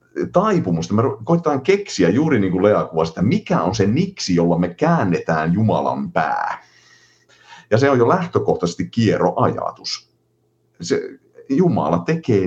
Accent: native